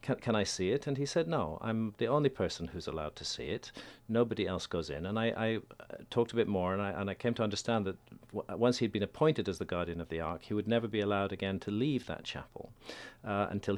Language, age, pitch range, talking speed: English, 50-69, 95-115 Hz, 250 wpm